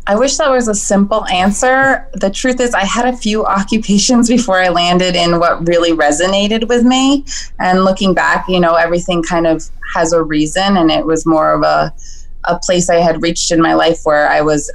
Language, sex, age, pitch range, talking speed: English, female, 20-39, 165-210 Hz, 210 wpm